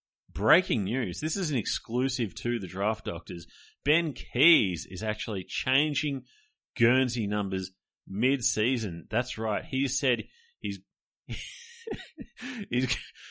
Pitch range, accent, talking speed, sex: 95-125 Hz, Australian, 110 wpm, male